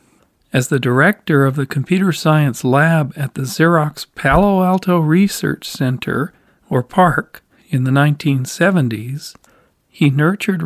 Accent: American